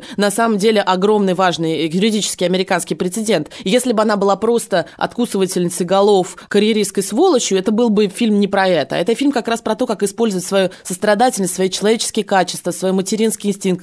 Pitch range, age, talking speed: 180-225 Hz, 20-39, 175 wpm